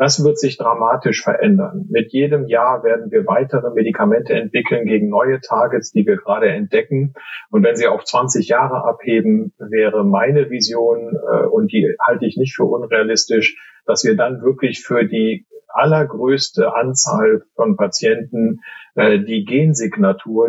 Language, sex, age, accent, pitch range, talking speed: German, male, 50-69, German, 125-210 Hz, 145 wpm